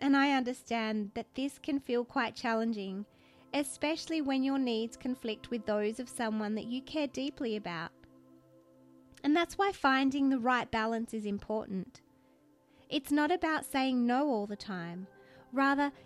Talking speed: 155 wpm